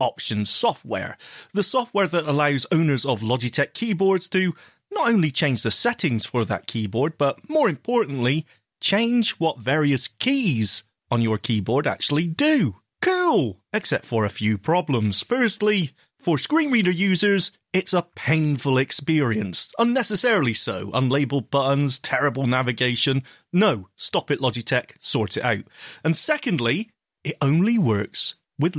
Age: 30-49